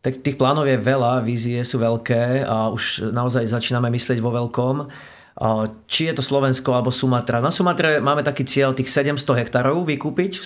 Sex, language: male, Slovak